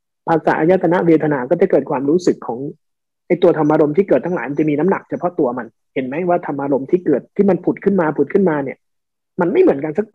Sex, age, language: male, 20-39, Thai